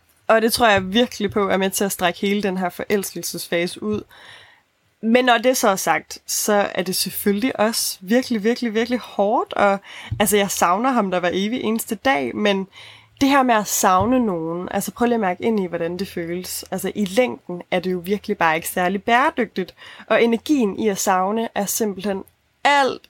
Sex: female